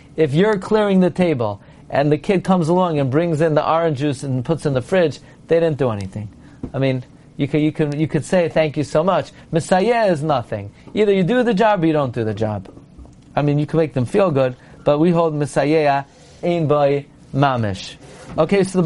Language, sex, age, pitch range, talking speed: English, male, 40-59, 140-170 Hz, 225 wpm